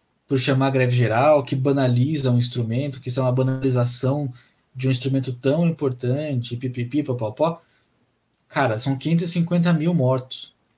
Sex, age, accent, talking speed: male, 20-39, Brazilian, 145 wpm